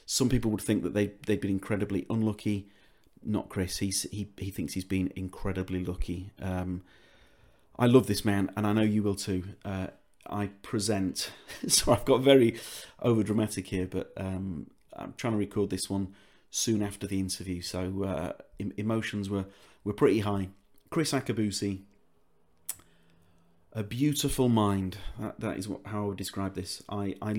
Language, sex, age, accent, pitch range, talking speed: English, male, 30-49, British, 95-110 Hz, 165 wpm